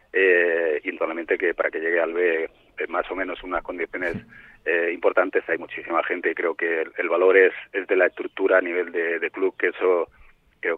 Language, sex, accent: Spanish, male, Spanish